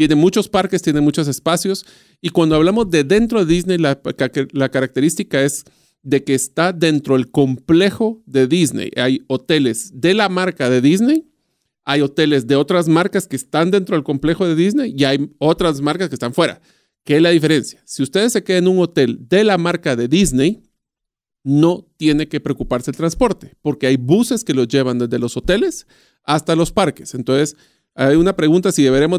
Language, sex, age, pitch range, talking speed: Spanish, male, 40-59, 140-190 Hz, 185 wpm